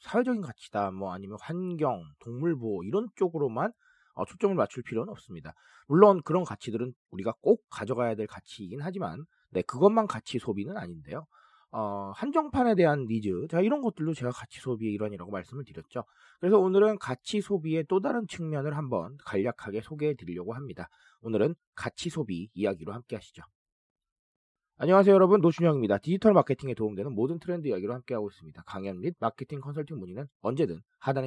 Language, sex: Korean, male